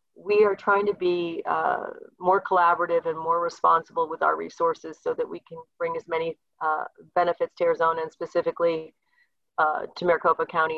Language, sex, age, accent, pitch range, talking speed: English, female, 40-59, American, 170-225 Hz, 175 wpm